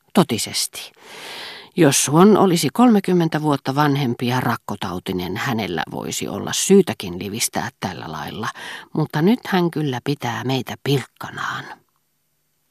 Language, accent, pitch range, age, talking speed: Finnish, native, 115-145 Hz, 40-59, 110 wpm